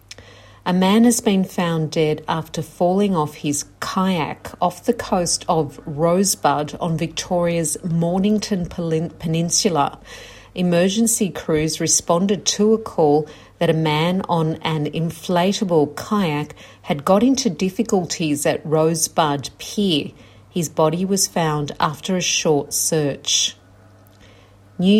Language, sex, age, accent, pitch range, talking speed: English, female, 50-69, Australian, 155-190 Hz, 120 wpm